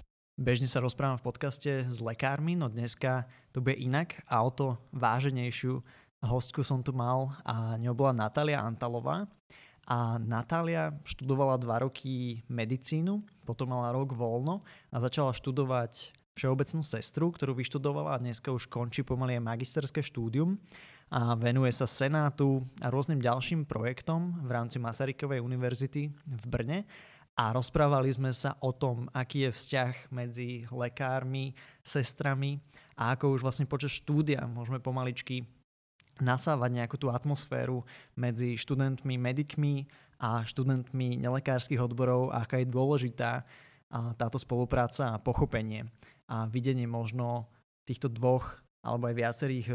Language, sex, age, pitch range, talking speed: Slovak, male, 20-39, 120-140 Hz, 135 wpm